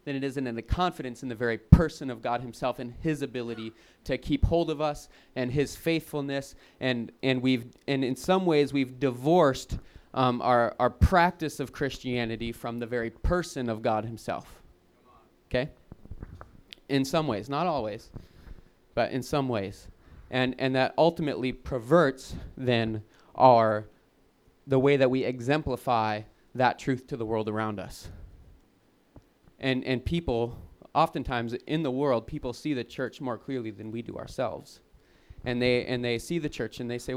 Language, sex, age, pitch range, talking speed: English, male, 30-49, 115-140 Hz, 165 wpm